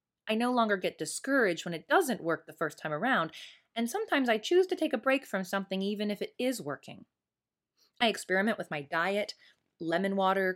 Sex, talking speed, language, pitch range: female, 200 wpm, English, 165-230 Hz